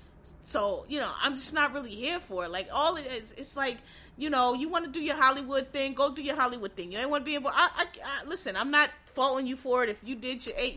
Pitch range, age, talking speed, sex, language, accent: 245-300 Hz, 30-49, 285 wpm, female, English, American